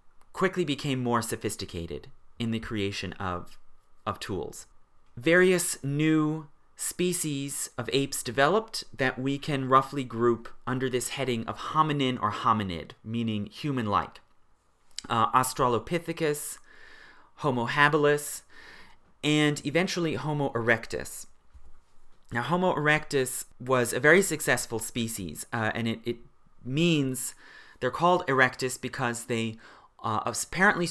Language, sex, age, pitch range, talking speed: English, male, 30-49, 110-150 Hz, 115 wpm